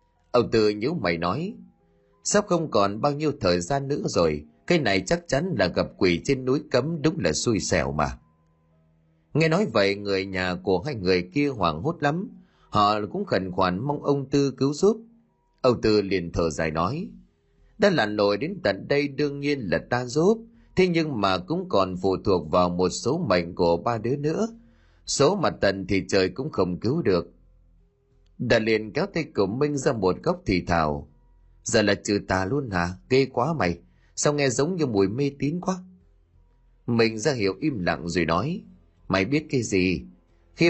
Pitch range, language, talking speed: 90-145 Hz, Vietnamese, 195 wpm